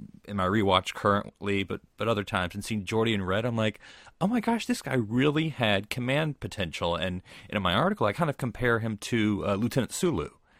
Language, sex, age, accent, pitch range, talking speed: English, male, 30-49, American, 95-125 Hz, 210 wpm